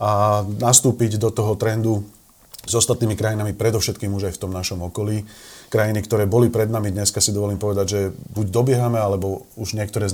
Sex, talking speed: male, 185 wpm